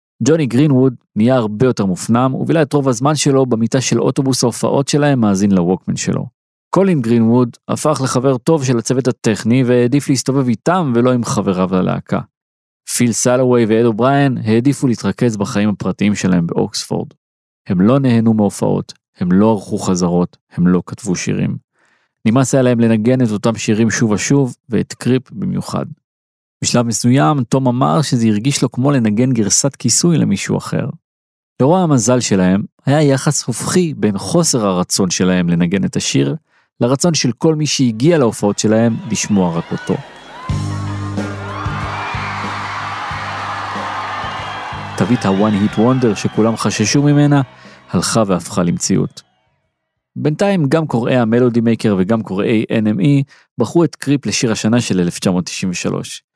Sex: male